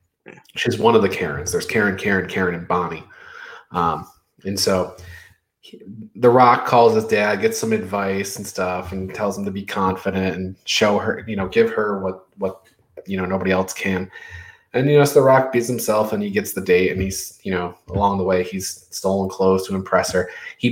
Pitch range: 95-125 Hz